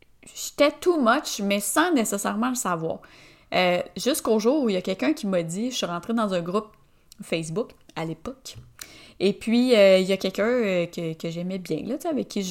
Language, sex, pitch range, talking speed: French, female, 185-245 Hz, 205 wpm